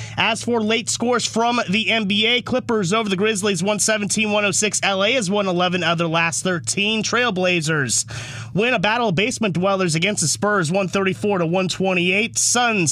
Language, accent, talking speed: English, American, 145 wpm